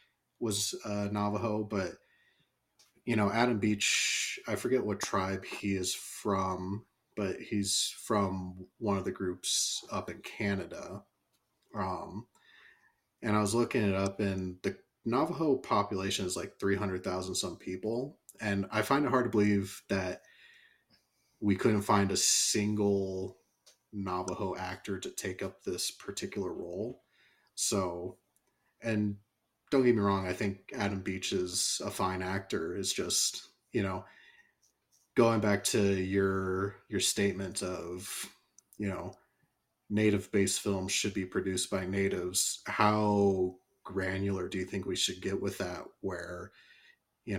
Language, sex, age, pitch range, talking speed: English, male, 30-49, 95-105 Hz, 135 wpm